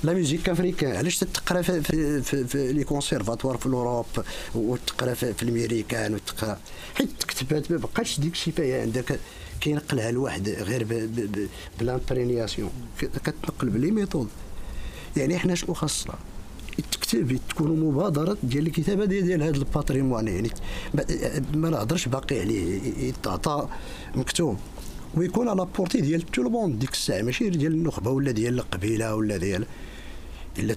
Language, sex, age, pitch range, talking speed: Arabic, male, 50-69, 115-160 Hz, 125 wpm